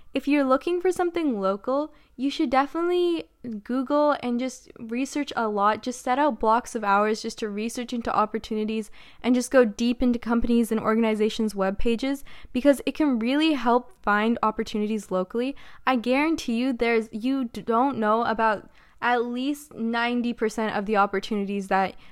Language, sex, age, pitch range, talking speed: English, female, 10-29, 220-260 Hz, 160 wpm